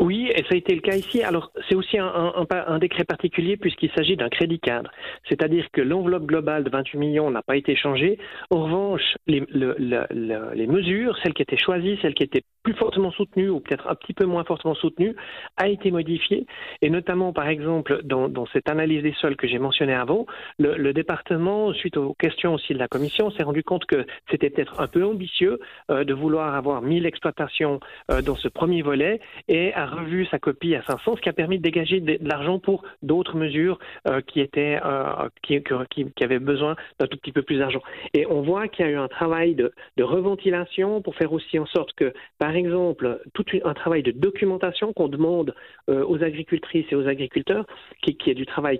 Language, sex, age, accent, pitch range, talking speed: French, male, 40-59, French, 145-185 Hz, 215 wpm